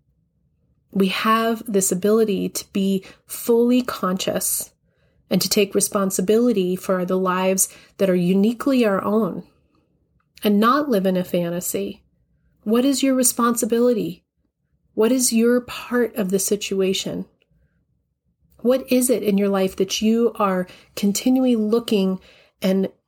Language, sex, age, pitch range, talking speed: English, female, 30-49, 190-230 Hz, 125 wpm